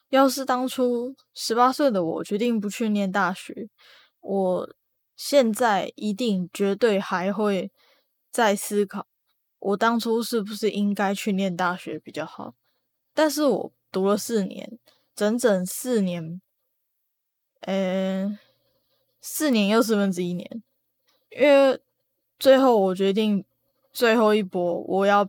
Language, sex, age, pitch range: Chinese, female, 10-29, 190-235 Hz